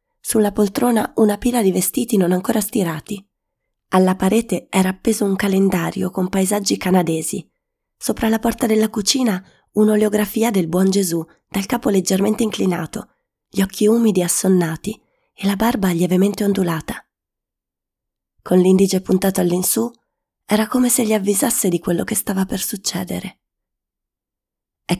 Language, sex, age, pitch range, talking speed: Italian, female, 20-39, 180-215 Hz, 135 wpm